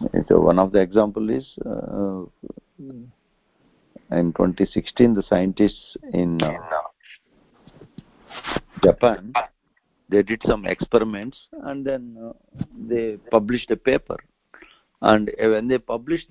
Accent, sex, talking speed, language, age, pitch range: Indian, male, 105 wpm, English, 60-79, 100-125 Hz